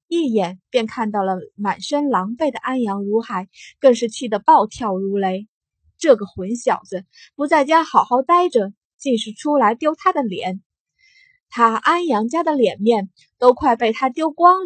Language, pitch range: Chinese, 215-300 Hz